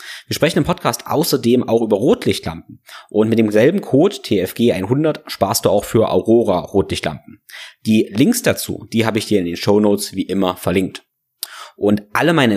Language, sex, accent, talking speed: German, male, German, 165 wpm